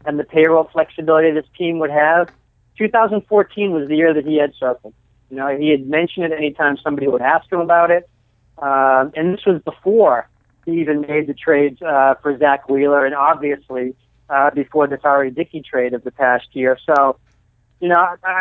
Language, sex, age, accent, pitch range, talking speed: English, male, 40-59, American, 135-165 Hz, 190 wpm